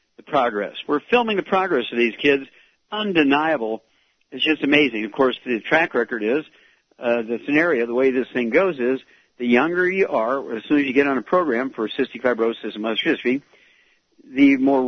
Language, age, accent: English, 50-69, American